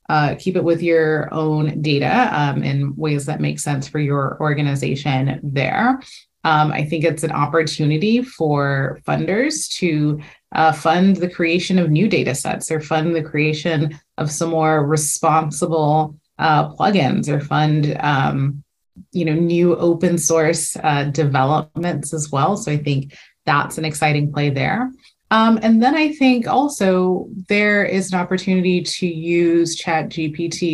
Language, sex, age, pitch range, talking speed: English, female, 20-39, 150-175 Hz, 150 wpm